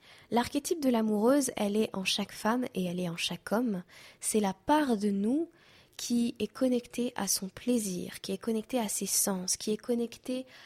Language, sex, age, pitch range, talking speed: French, female, 20-39, 195-240 Hz, 190 wpm